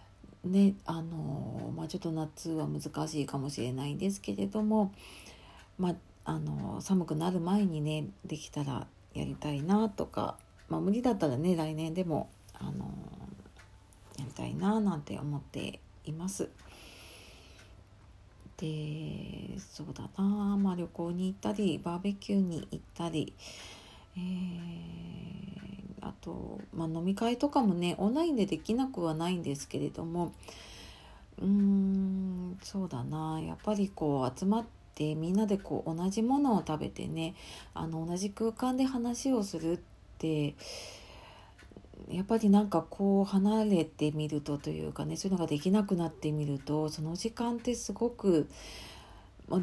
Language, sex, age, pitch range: Japanese, female, 50-69, 145-195 Hz